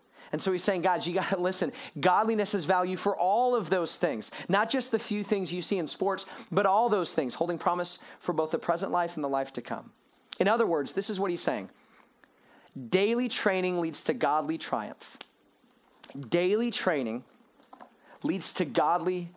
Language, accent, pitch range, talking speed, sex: English, American, 175-215 Hz, 190 wpm, male